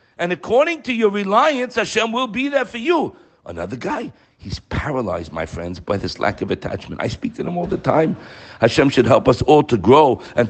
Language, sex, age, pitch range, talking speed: English, male, 50-69, 115-180 Hz, 210 wpm